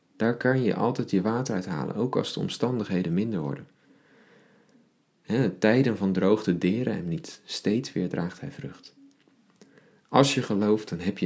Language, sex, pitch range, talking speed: Dutch, male, 95-160 Hz, 165 wpm